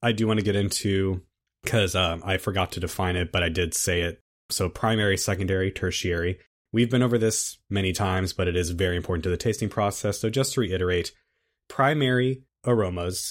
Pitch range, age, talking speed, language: 90-110 Hz, 30-49, 190 wpm, English